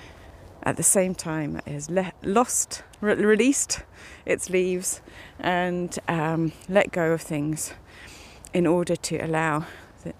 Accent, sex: British, female